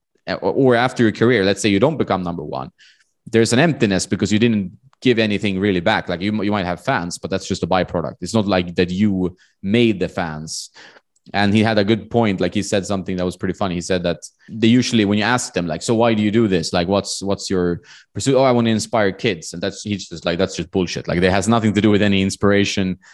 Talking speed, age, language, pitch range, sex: 255 wpm, 20-39, English, 95-110 Hz, male